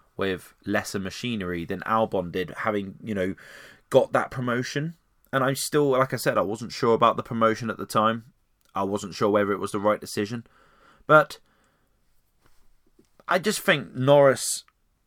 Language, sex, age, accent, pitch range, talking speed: English, male, 20-39, British, 100-140 Hz, 165 wpm